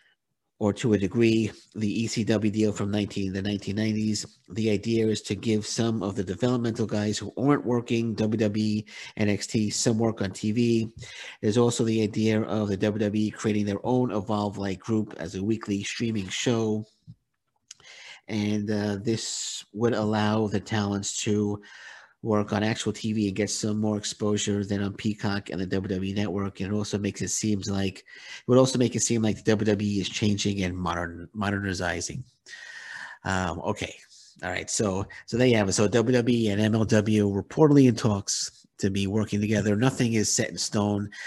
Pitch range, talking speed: 100-115 Hz, 170 wpm